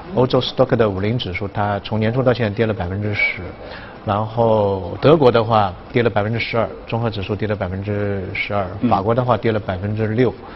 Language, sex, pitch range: Chinese, male, 100-120 Hz